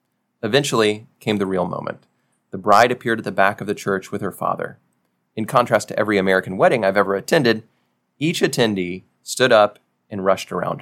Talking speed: 185 wpm